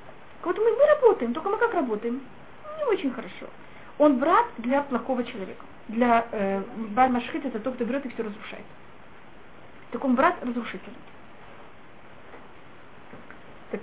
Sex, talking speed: female, 135 wpm